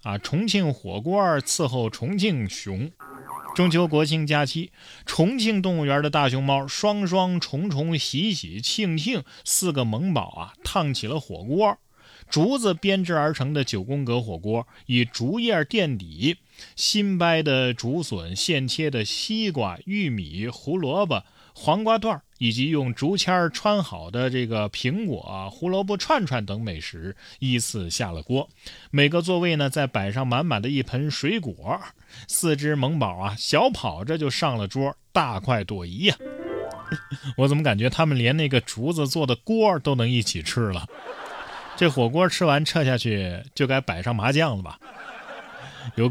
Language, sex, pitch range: Chinese, male, 115-175 Hz